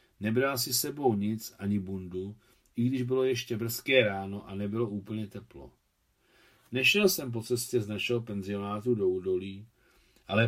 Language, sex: Czech, male